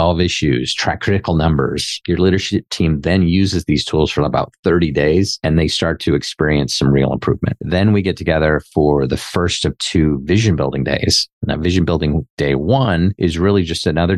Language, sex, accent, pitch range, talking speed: English, male, American, 75-90 Hz, 185 wpm